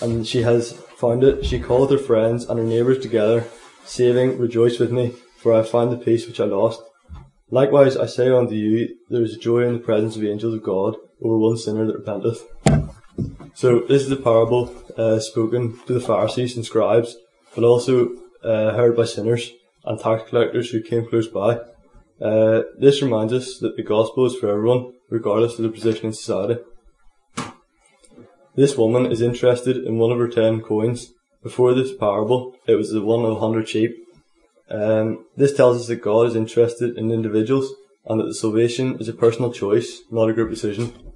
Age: 20-39